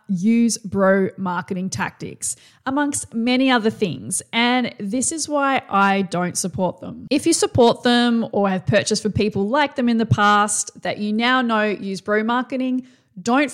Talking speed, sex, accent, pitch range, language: 170 wpm, female, Australian, 200-255 Hz, English